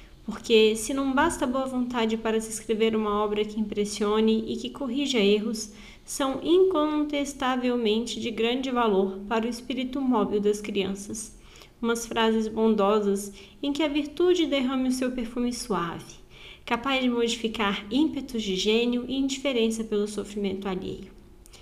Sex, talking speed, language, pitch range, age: female, 140 wpm, Portuguese, 210-275 Hz, 20-39